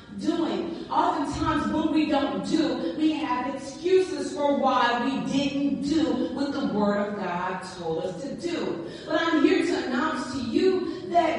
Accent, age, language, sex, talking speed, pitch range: American, 40-59, English, female, 165 wpm, 220-330 Hz